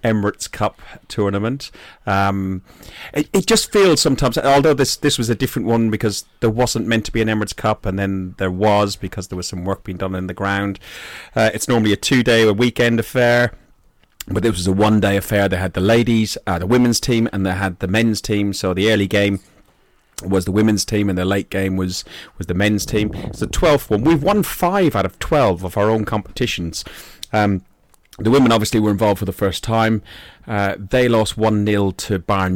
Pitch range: 95-120 Hz